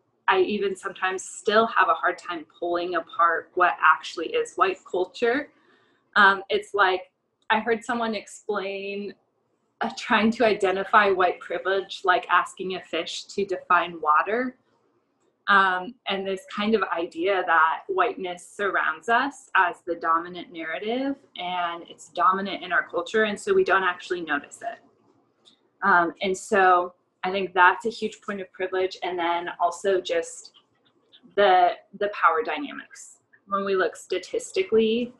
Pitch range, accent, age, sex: 175-225 Hz, American, 20-39, female